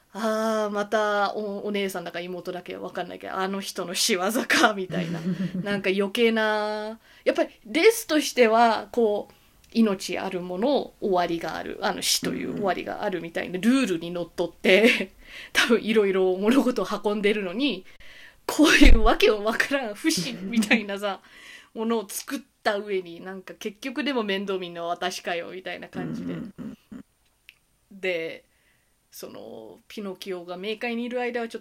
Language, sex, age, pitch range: Japanese, female, 20-39, 185-245 Hz